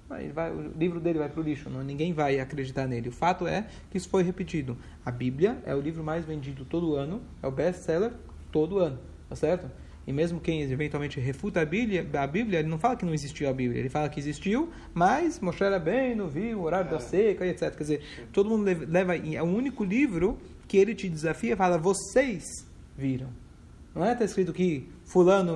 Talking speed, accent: 215 wpm, Brazilian